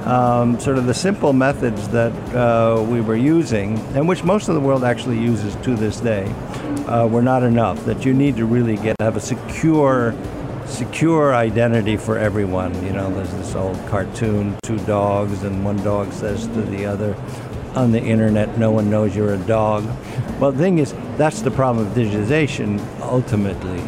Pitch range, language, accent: 110-140 Hz, English, American